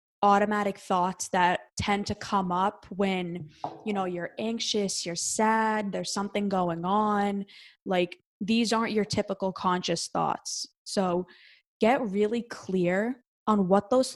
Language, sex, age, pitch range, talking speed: English, female, 20-39, 185-210 Hz, 135 wpm